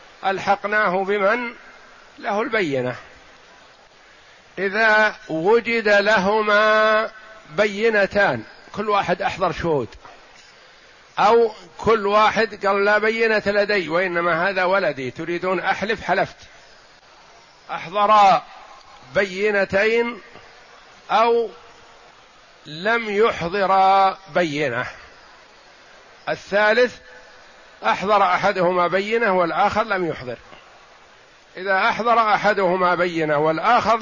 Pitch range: 180-215 Hz